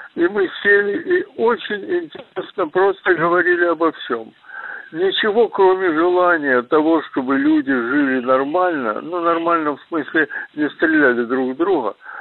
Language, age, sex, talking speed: Russian, 60-79, male, 140 wpm